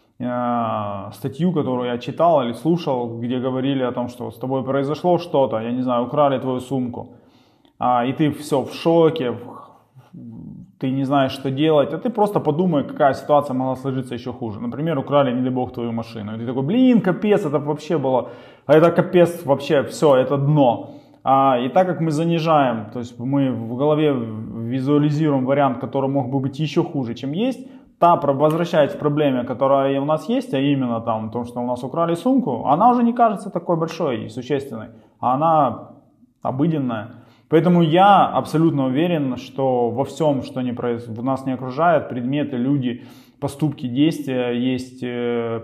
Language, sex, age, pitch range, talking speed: Russian, male, 20-39, 125-150 Hz, 170 wpm